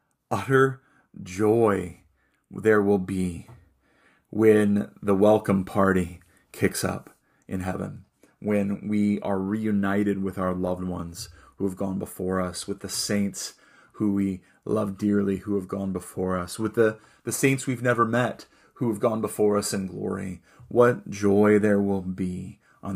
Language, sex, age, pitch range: English, male, 30-49, 95-105 Hz